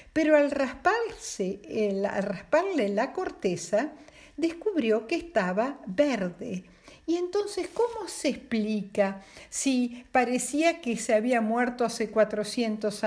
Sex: female